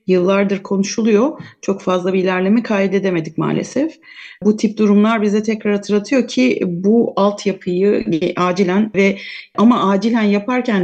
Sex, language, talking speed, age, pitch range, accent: female, Turkish, 120 wpm, 40-59, 190-205 Hz, native